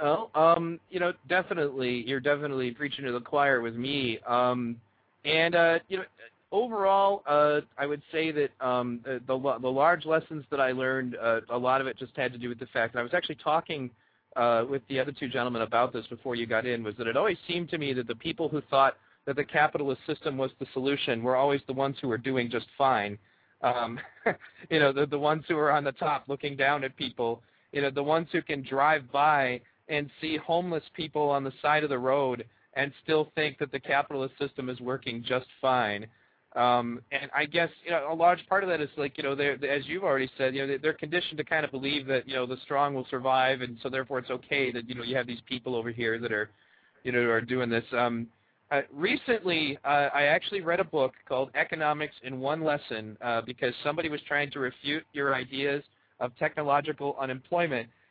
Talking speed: 220 wpm